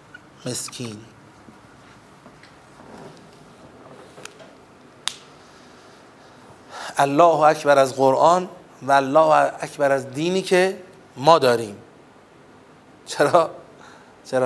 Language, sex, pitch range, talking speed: Persian, male, 135-200 Hz, 60 wpm